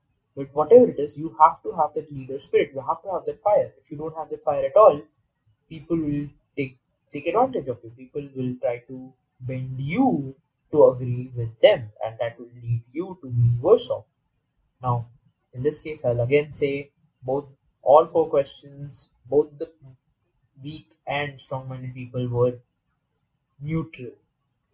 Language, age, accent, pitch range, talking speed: English, 20-39, Indian, 130-175 Hz, 170 wpm